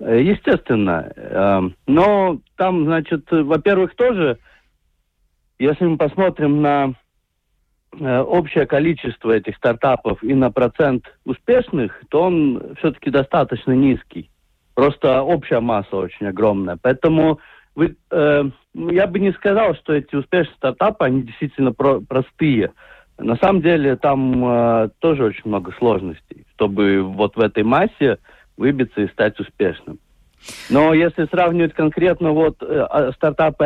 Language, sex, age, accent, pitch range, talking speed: Russian, male, 50-69, native, 115-160 Hz, 110 wpm